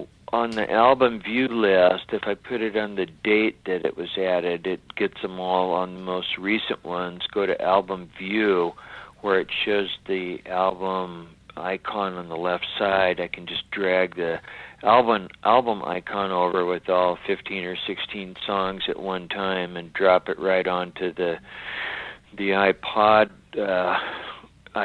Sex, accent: male, American